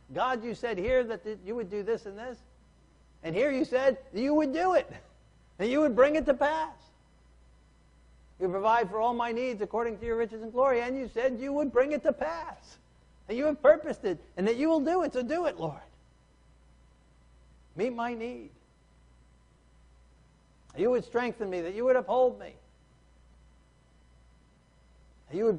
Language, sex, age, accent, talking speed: English, male, 50-69, American, 185 wpm